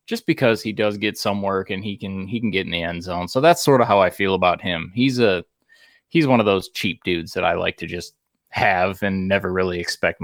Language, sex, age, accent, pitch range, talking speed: English, male, 20-39, American, 105-130 Hz, 260 wpm